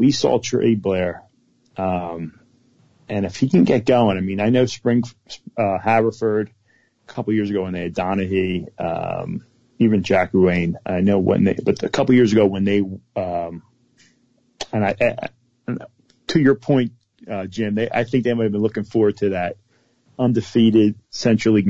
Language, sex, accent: English, male, American